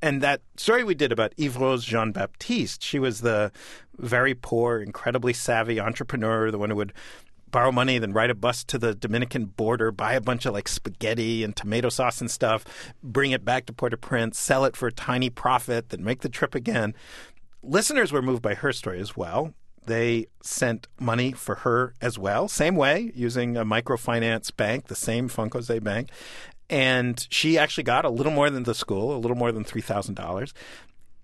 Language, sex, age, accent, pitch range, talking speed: English, male, 50-69, American, 110-130 Hz, 190 wpm